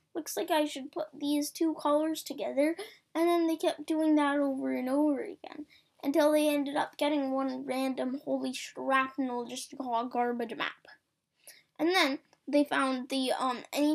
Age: 10-29